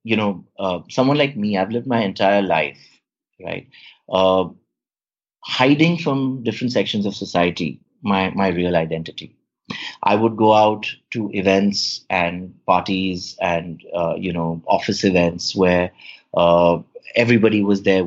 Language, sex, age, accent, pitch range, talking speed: English, male, 30-49, Indian, 95-125 Hz, 135 wpm